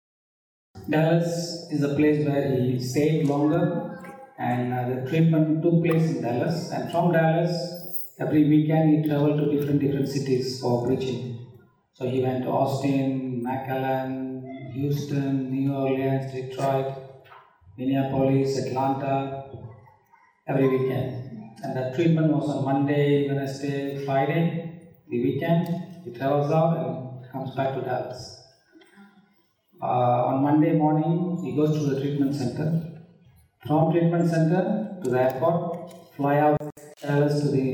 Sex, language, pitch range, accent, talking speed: male, English, 135-165 Hz, Indian, 130 wpm